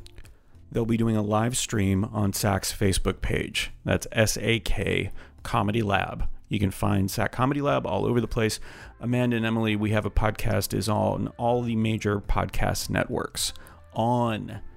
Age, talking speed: 30-49, 160 wpm